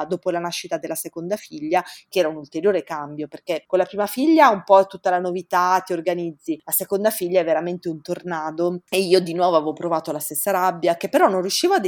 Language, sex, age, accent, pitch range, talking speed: Italian, female, 30-49, native, 175-220 Hz, 220 wpm